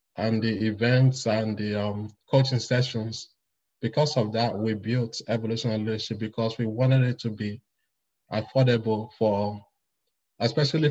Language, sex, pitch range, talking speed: English, male, 110-125 Hz, 130 wpm